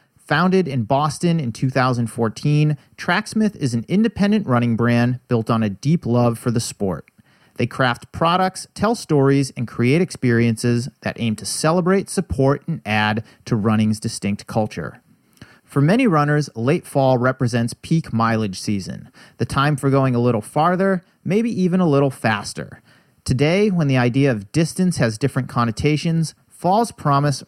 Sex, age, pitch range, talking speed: male, 40-59, 120-175 Hz, 155 wpm